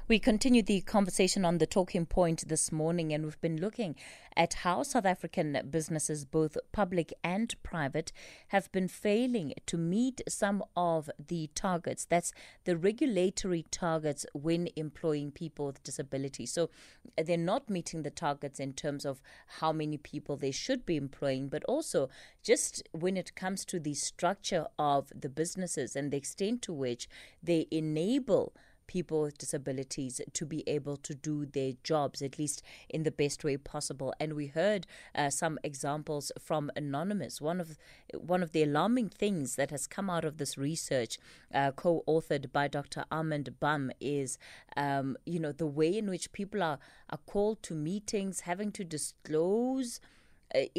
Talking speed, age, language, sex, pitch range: 165 wpm, 20-39, English, female, 150-190 Hz